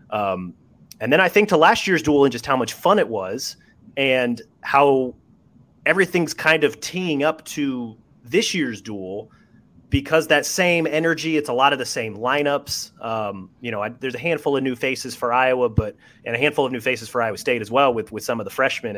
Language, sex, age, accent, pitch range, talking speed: English, male, 30-49, American, 115-150 Hz, 210 wpm